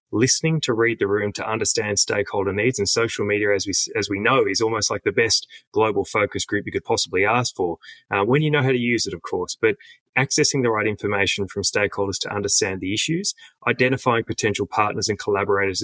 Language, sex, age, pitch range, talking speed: English, male, 30-49, 100-130 Hz, 210 wpm